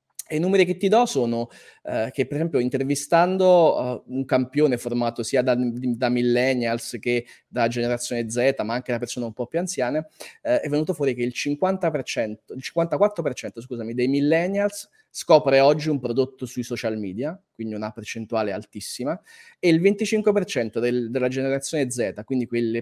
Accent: native